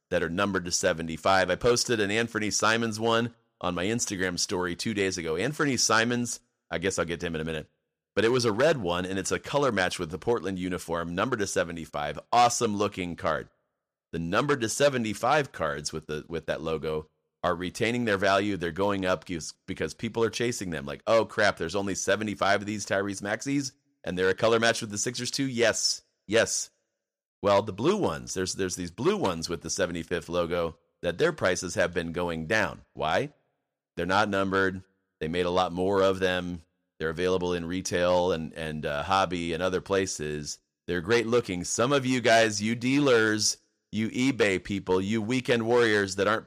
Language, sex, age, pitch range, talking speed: English, male, 30-49, 90-115 Hz, 195 wpm